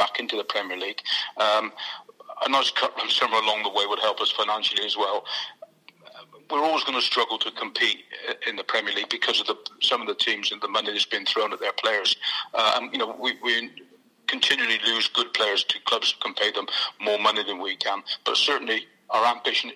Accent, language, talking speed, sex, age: British, English, 215 wpm, male, 40-59